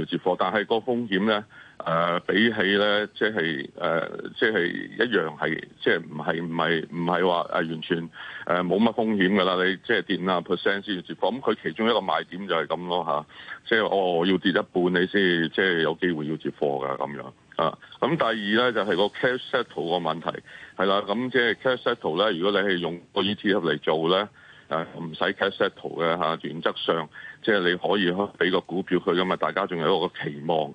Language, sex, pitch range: Chinese, male, 80-100 Hz